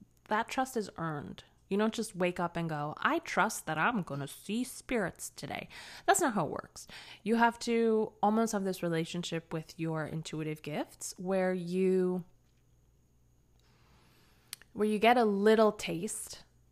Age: 20-39